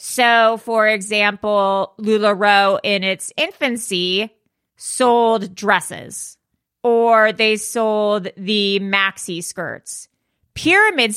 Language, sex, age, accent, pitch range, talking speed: English, female, 30-49, American, 195-230 Hz, 85 wpm